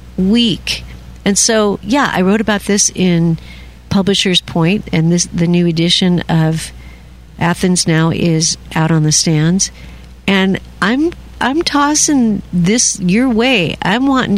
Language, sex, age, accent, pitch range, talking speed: English, female, 50-69, American, 165-215 Hz, 140 wpm